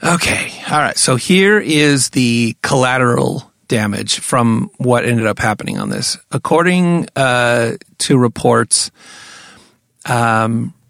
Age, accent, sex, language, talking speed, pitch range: 40-59, American, male, English, 115 wpm, 120-145 Hz